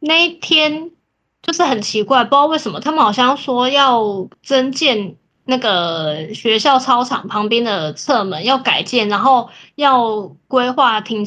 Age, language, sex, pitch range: 10-29, Chinese, female, 215-270 Hz